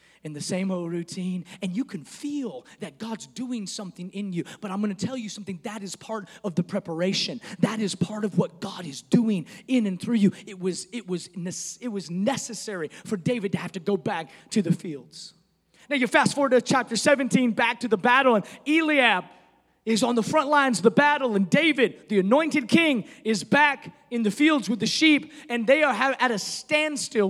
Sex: male